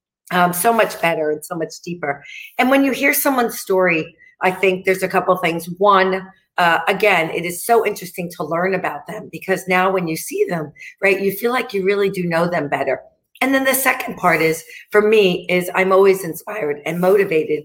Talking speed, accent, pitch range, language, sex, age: 210 wpm, American, 165-215 Hz, English, female, 50-69